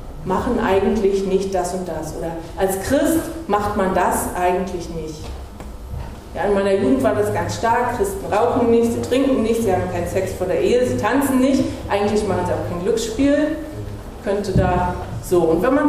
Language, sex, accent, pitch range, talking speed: German, female, German, 175-250 Hz, 190 wpm